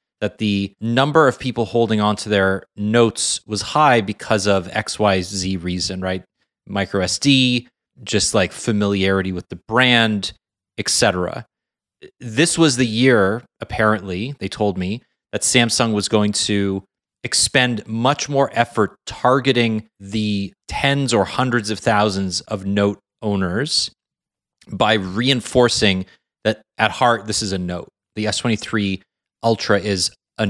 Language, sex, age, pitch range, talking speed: English, male, 30-49, 95-120 Hz, 135 wpm